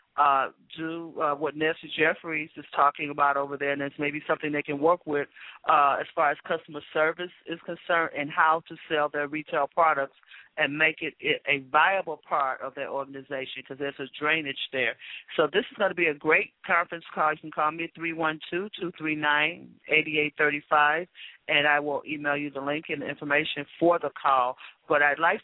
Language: English